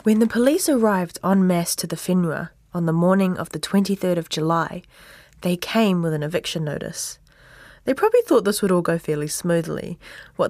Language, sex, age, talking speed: English, female, 20-39, 190 wpm